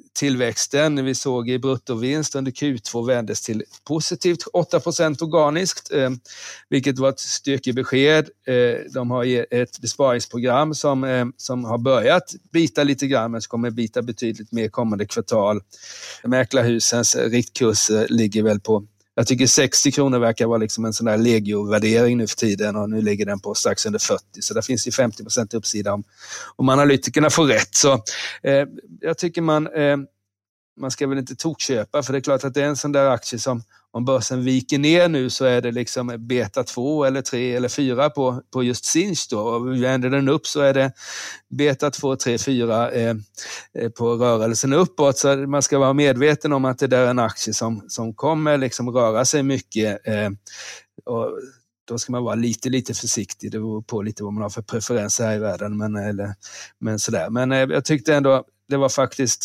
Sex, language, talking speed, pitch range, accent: male, Swedish, 180 wpm, 115-140 Hz, native